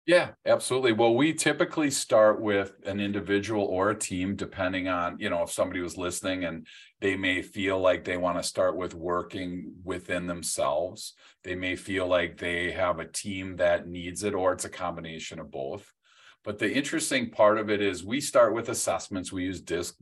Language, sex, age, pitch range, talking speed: English, male, 40-59, 90-105 Hz, 190 wpm